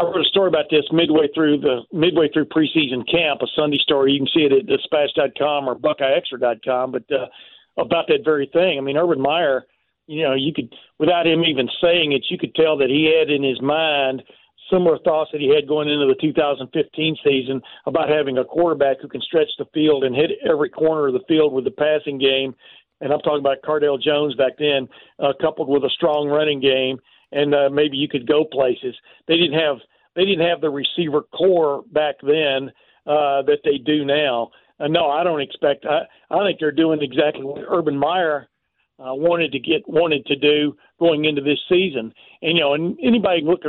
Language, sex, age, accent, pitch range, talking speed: English, male, 50-69, American, 140-165 Hz, 215 wpm